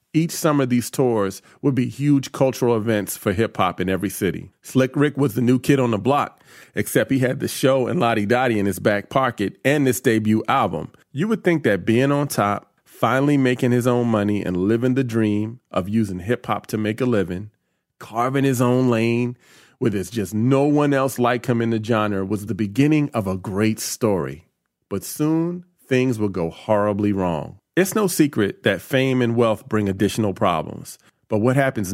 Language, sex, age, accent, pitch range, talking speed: English, male, 30-49, American, 100-130 Hz, 200 wpm